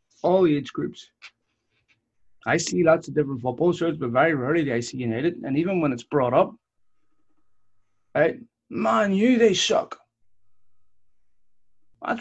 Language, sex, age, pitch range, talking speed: English, male, 30-49, 120-155 Hz, 140 wpm